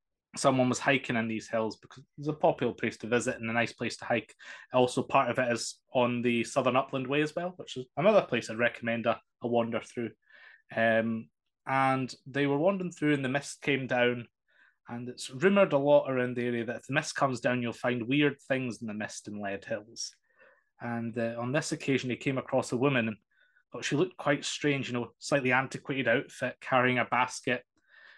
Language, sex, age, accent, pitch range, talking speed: English, male, 20-39, British, 115-140 Hz, 210 wpm